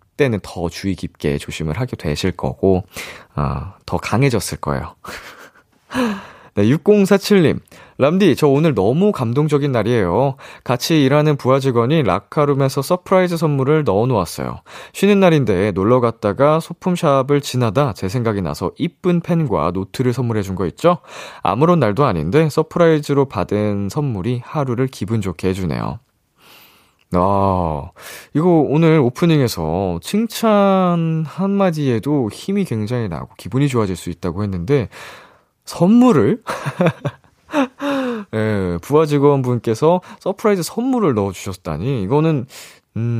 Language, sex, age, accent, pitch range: Korean, male, 20-39, native, 95-155 Hz